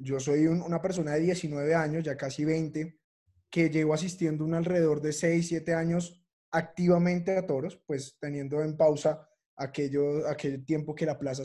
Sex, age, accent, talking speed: male, 20-39, Colombian, 175 wpm